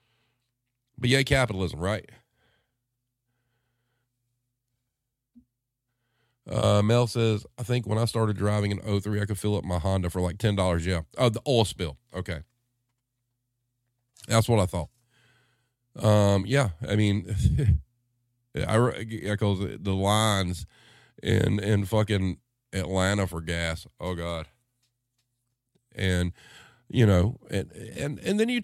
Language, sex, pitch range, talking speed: English, male, 105-125 Hz, 125 wpm